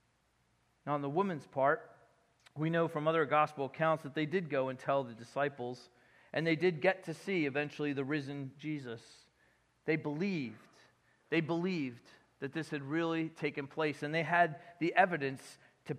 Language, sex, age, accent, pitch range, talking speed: English, male, 40-59, American, 145-180 Hz, 170 wpm